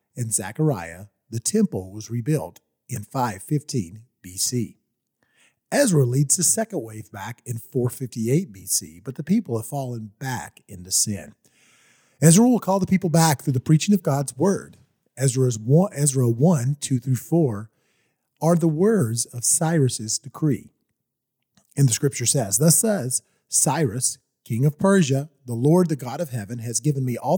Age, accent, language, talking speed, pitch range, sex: 40-59, American, English, 155 wpm, 115-165 Hz, male